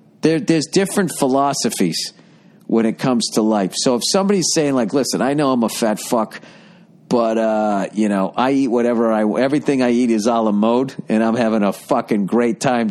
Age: 50-69